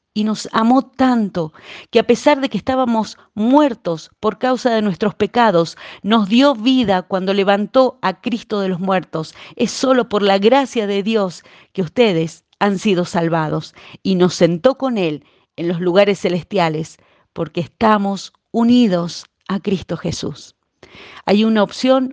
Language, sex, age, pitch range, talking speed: Spanish, female, 40-59, 180-235 Hz, 150 wpm